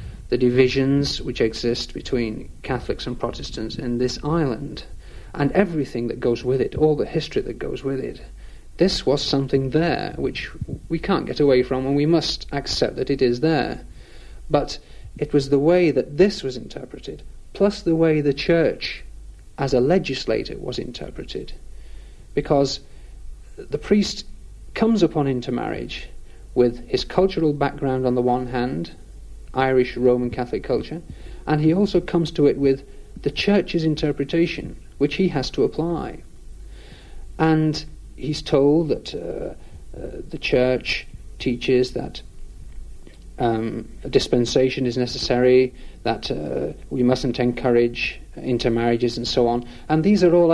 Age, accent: 40-59, British